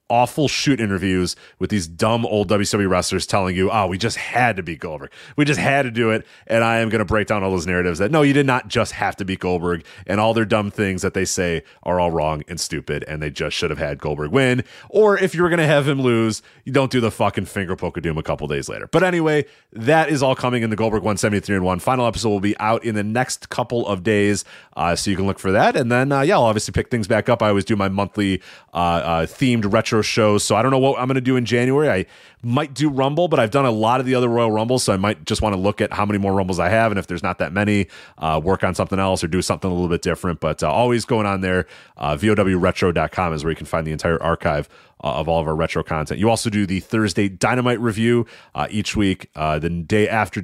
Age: 30-49